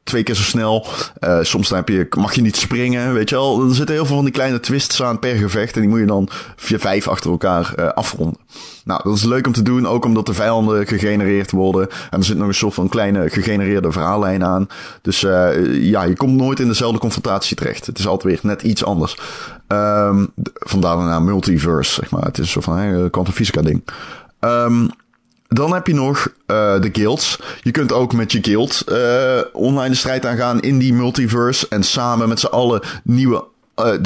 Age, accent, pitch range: 20-39, Dutch, 100-125 Hz